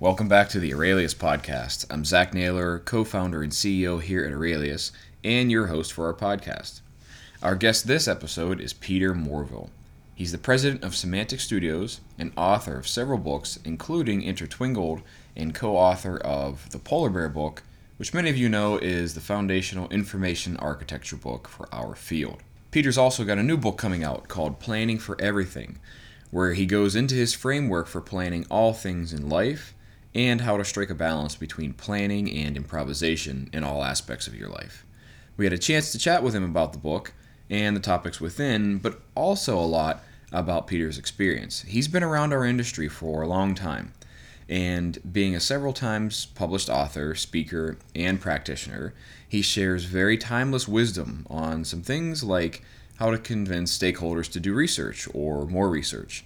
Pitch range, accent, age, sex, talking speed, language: 80-105 Hz, American, 20-39, male, 175 wpm, English